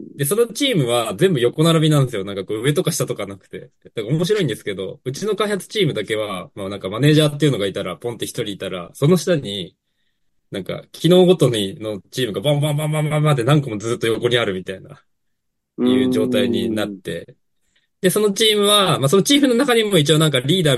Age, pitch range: 20-39, 100-155 Hz